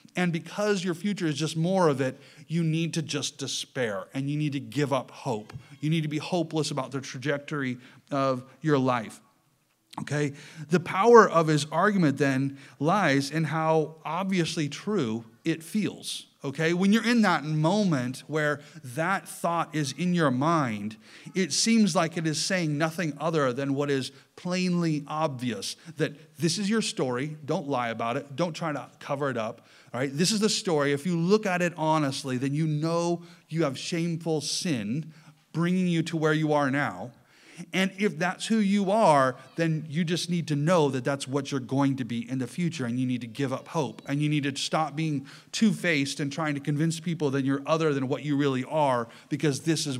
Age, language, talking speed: 30-49, English, 200 wpm